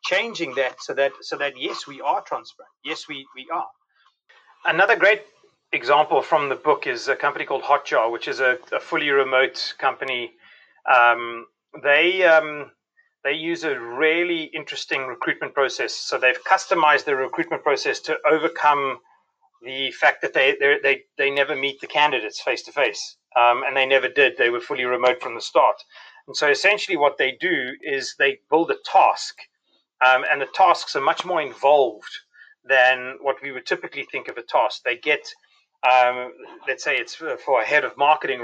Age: 30-49